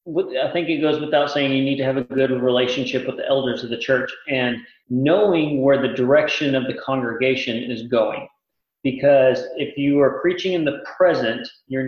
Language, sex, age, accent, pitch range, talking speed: English, male, 40-59, American, 130-155 Hz, 190 wpm